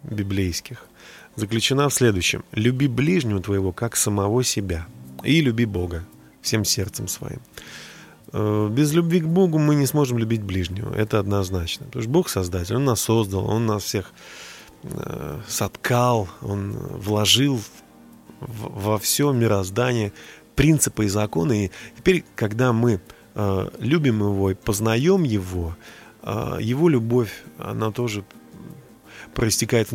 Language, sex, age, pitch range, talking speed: Russian, male, 30-49, 100-130 Hz, 120 wpm